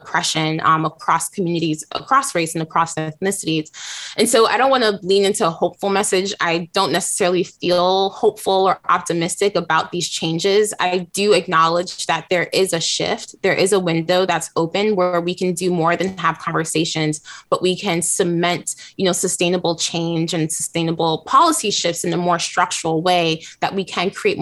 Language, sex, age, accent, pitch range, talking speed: English, female, 20-39, American, 165-190 Hz, 180 wpm